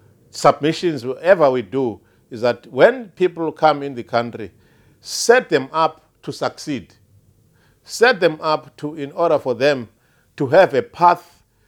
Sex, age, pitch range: male, 50-69, 115-145 Hz